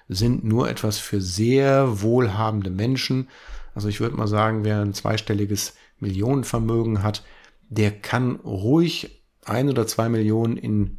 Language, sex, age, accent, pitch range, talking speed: German, male, 50-69, German, 100-115 Hz, 135 wpm